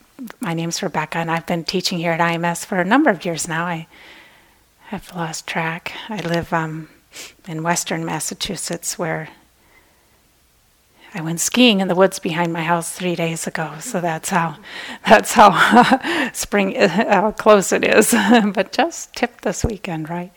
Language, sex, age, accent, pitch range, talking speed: English, female, 30-49, American, 180-215 Hz, 165 wpm